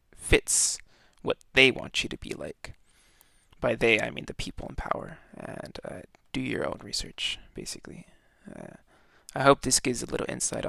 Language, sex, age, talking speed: English, male, 20-39, 175 wpm